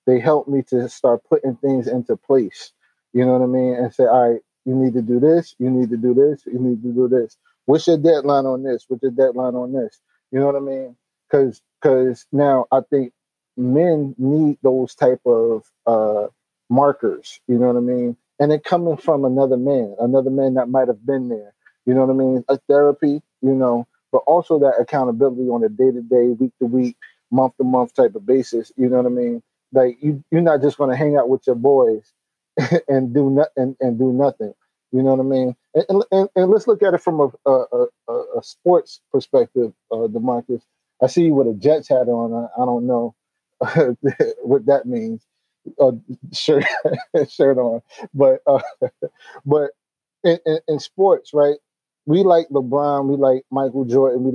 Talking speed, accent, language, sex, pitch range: 200 wpm, American, English, male, 125-150 Hz